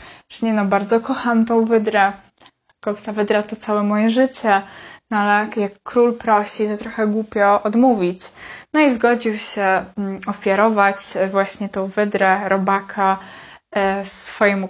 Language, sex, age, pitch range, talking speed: Polish, female, 20-39, 200-225 Hz, 135 wpm